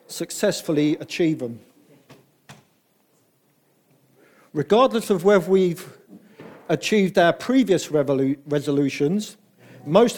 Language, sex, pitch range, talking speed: English, male, 160-210 Hz, 70 wpm